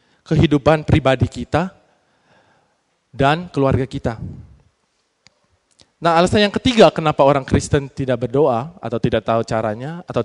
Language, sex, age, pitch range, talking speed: Malay, male, 20-39, 130-175 Hz, 115 wpm